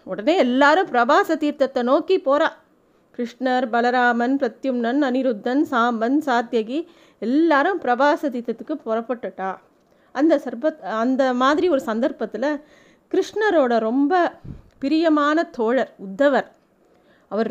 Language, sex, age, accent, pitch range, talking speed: Tamil, female, 30-49, native, 220-285 Hz, 95 wpm